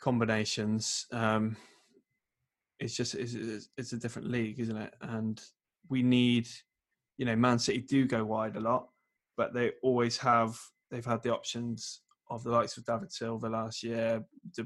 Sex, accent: male, British